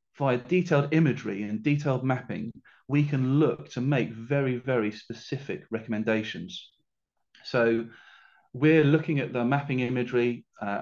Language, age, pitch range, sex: English, 30-49, 115-135 Hz, male